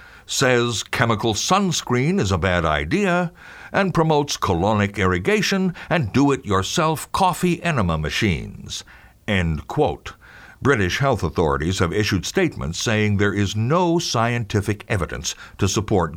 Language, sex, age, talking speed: English, male, 60-79, 120 wpm